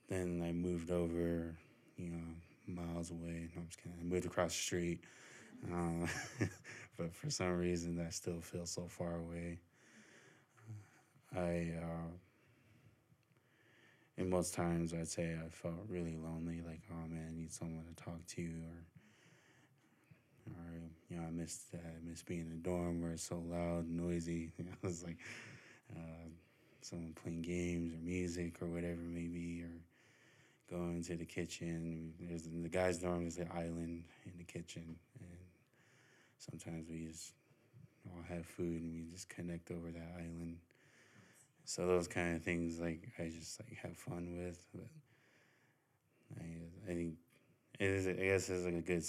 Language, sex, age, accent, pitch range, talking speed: English, male, 20-39, American, 85-90 Hz, 160 wpm